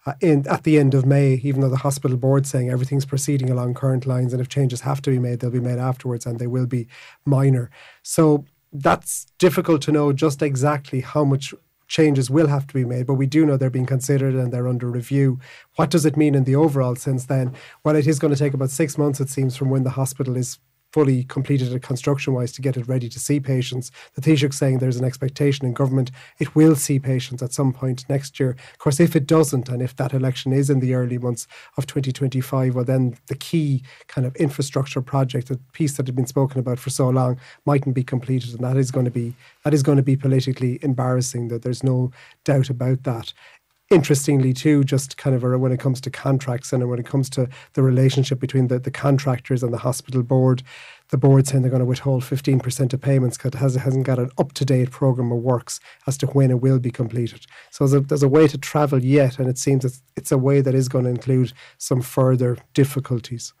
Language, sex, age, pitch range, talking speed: English, male, 30-49, 125-140 Hz, 225 wpm